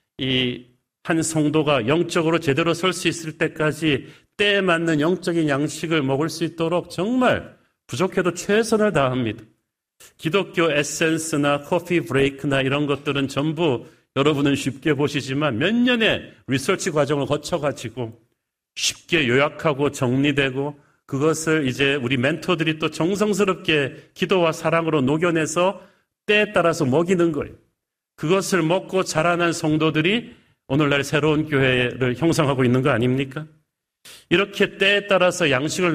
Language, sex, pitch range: Korean, male, 135-170 Hz